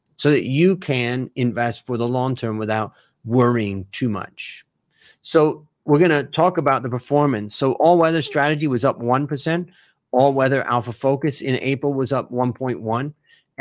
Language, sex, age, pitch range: Thai, male, 30-49, 115-140 Hz